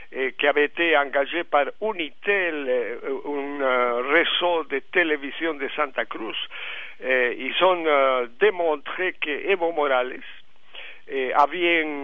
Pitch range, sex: 140-175 Hz, male